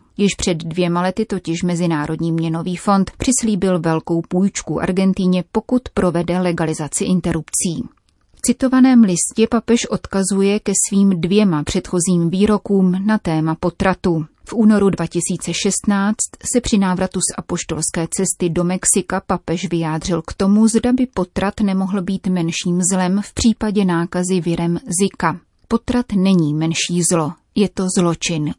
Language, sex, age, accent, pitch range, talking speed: Czech, female, 30-49, native, 170-200 Hz, 130 wpm